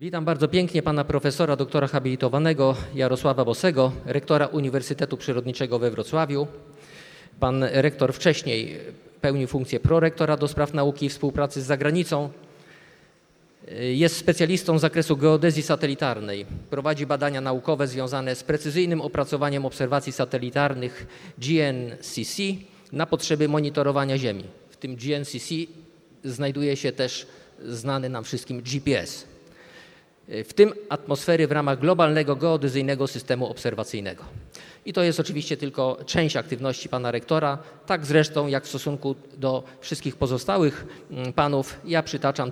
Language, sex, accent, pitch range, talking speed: Polish, male, native, 130-155 Hz, 120 wpm